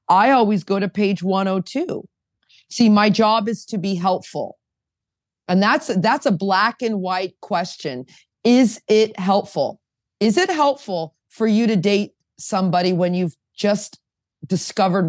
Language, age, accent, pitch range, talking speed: English, 30-49, American, 180-220 Hz, 145 wpm